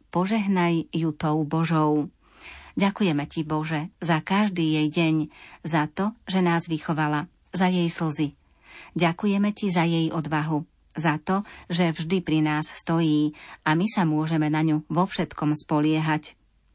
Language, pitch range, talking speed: Slovak, 155-175 Hz, 145 wpm